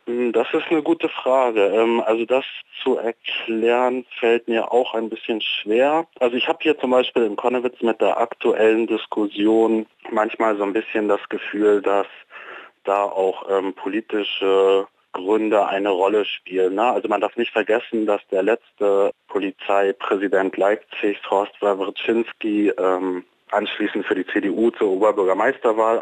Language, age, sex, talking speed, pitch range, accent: German, 30-49, male, 135 wpm, 100-115 Hz, German